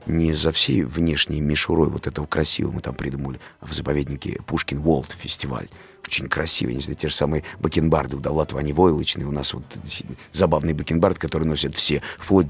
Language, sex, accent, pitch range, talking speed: Russian, male, native, 75-95 Hz, 180 wpm